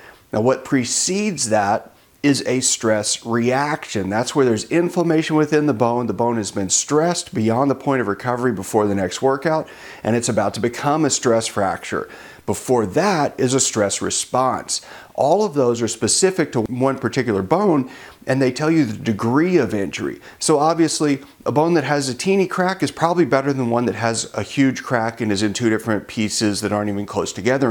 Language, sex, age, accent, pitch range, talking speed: English, male, 40-59, American, 110-145 Hz, 195 wpm